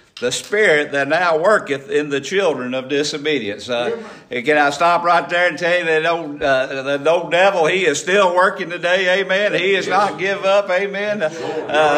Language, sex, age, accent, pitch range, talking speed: English, male, 50-69, American, 155-200 Hz, 195 wpm